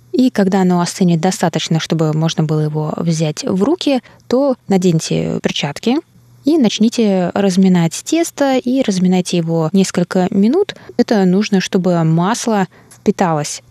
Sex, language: female, Russian